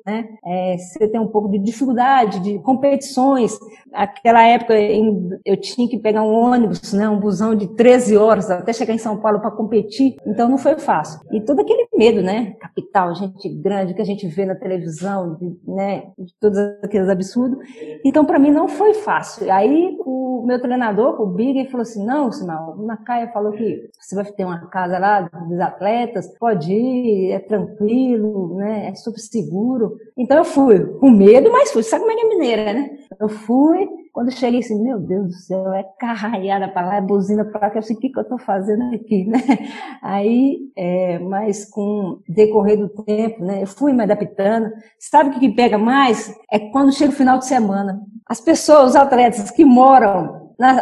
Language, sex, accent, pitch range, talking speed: Portuguese, female, Brazilian, 205-270 Hz, 195 wpm